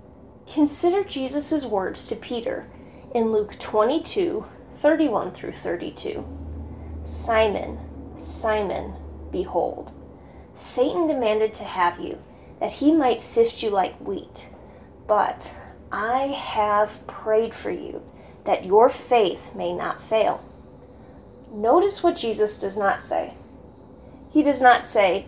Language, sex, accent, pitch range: English, female, American, 200-285 Hz